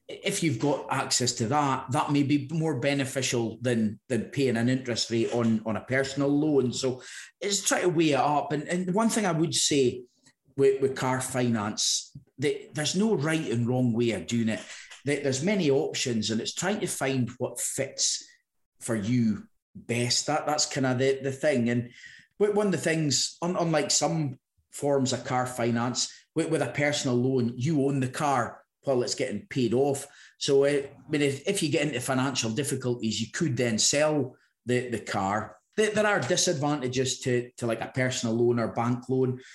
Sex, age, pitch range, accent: male, 30-49, 125-145 Hz, British